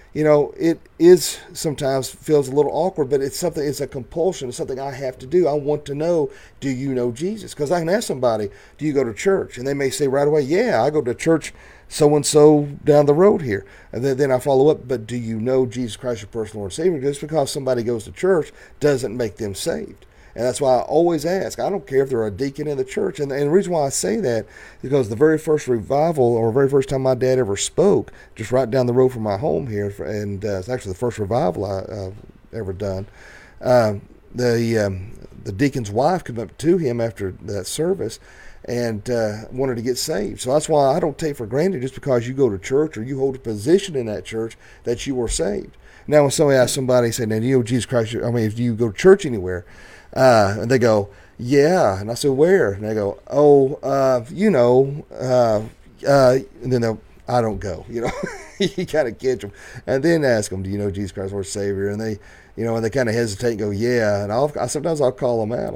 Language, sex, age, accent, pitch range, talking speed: English, male, 40-59, American, 110-145 Hz, 240 wpm